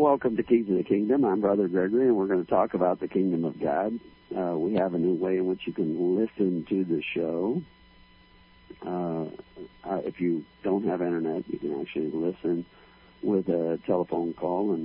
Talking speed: 195 wpm